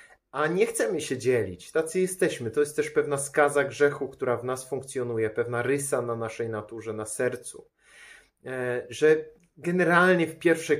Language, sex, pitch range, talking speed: Polish, male, 120-150 Hz, 155 wpm